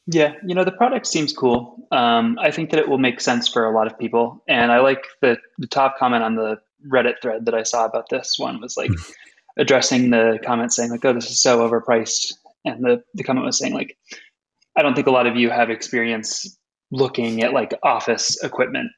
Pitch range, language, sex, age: 115-150 Hz, English, male, 20-39